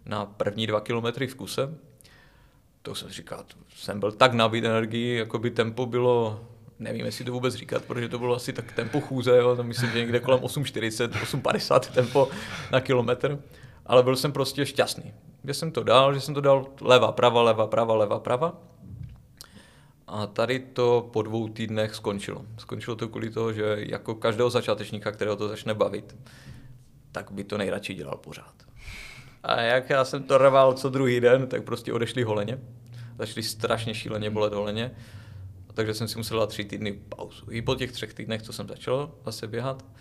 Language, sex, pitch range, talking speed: Czech, male, 110-130 Hz, 185 wpm